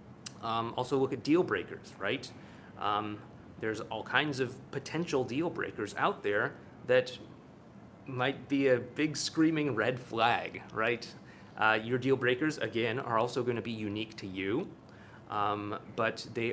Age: 30-49